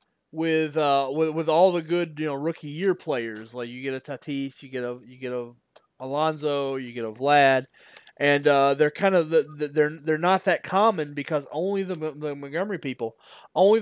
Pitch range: 140-180 Hz